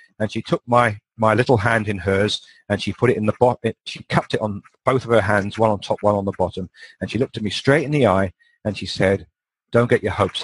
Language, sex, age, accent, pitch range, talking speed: English, male, 40-59, British, 100-130 Hz, 270 wpm